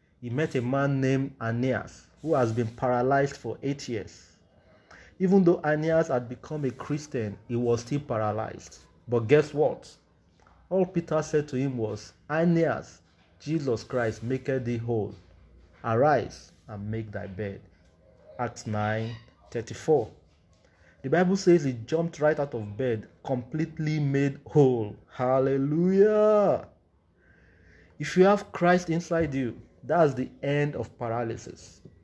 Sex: male